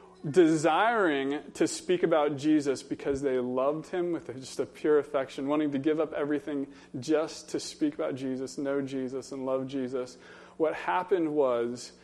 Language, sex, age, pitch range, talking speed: English, male, 20-39, 125-170 Hz, 160 wpm